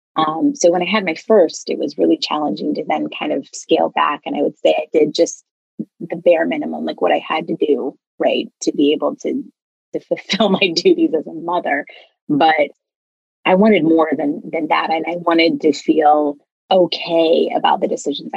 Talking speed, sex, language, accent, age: 200 wpm, female, English, American, 30-49